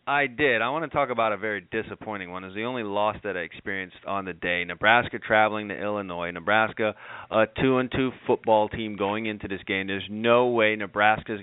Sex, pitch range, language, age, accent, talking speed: male, 100-125 Hz, English, 30-49, American, 215 wpm